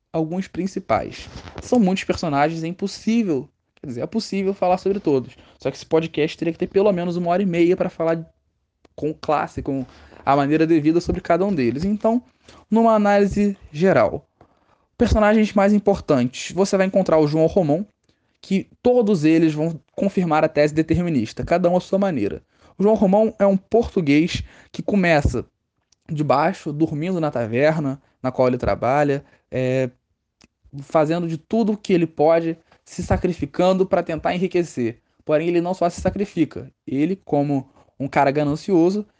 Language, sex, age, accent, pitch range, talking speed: Portuguese, male, 10-29, Brazilian, 150-190 Hz, 160 wpm